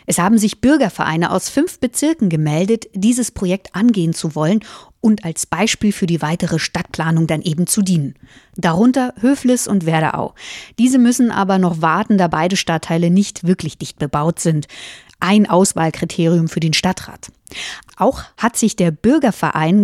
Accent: German